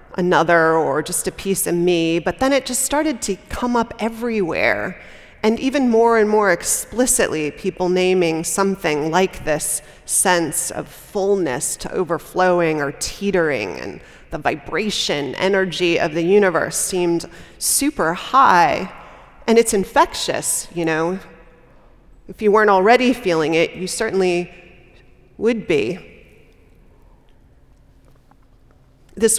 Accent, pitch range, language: American, 170-215 Hz, English